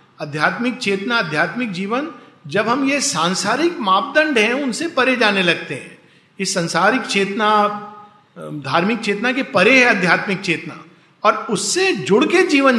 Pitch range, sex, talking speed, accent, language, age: 175-230 Hz, male, 140 wpm, native, Hindi, 50-69